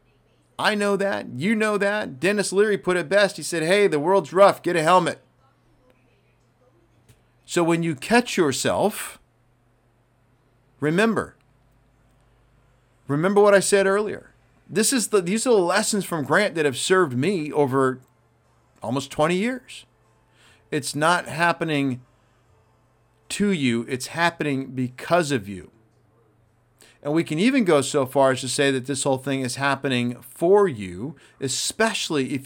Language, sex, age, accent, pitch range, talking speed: English, male, 40-59, American, 120-175 Hz, 140 wpm